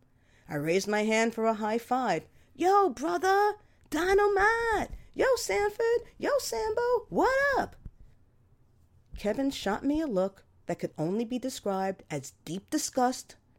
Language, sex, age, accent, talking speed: English, female, 40-59, American, 130 wpm